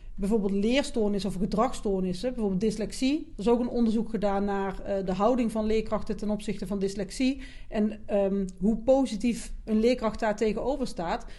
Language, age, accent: Dutch, 40-59, Dutch